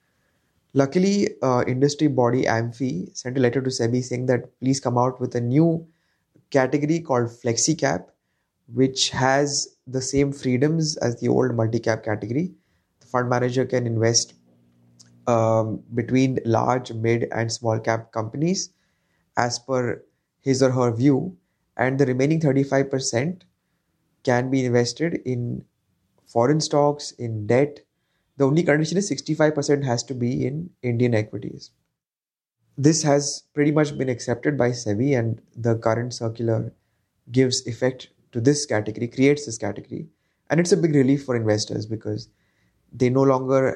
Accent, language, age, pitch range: Indian, English, 20-39, 115-140 Hz